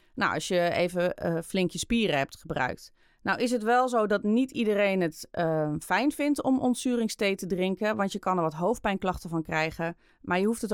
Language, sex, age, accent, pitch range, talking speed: Dutch, female, 30-49, Dutch, 165-210 Hz, 210 wpm